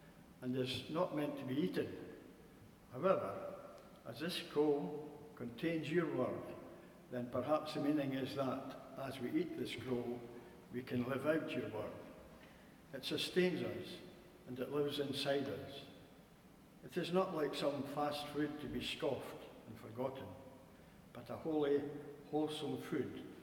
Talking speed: 145 wpm